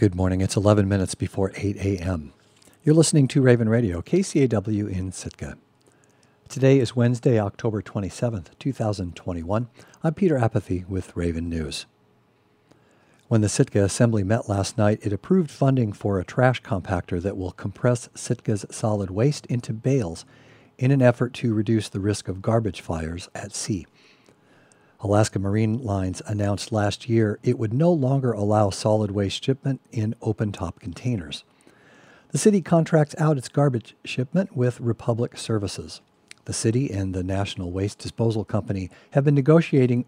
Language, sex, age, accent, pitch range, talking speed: English, male, 50-69, American, 95-125 Hz, 150 wpm